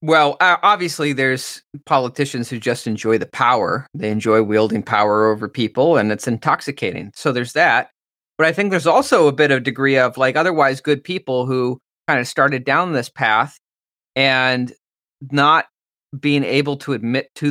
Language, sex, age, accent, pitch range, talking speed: English, male, 30-49, American, 125-155 Hz, 170 wpm